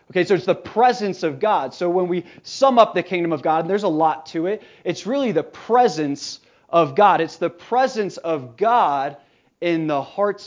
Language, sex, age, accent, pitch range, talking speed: English, male, 30-49, American, 150-195 Hz, 205 wpm